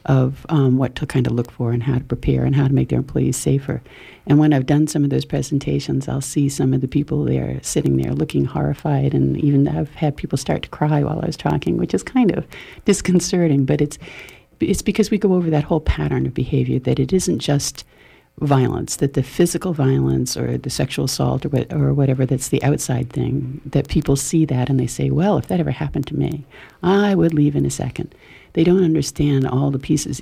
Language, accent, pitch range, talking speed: English, American, 125-150 Hz, 225 wpm